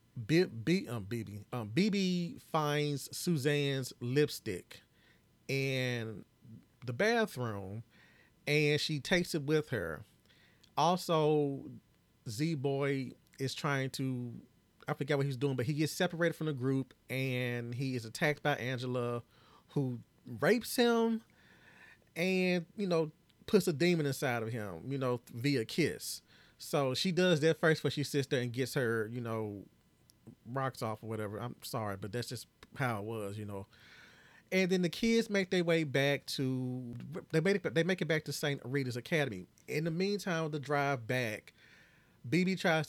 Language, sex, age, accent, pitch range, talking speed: English, male, 30-49, American, 120-155 Hz, 160 wpm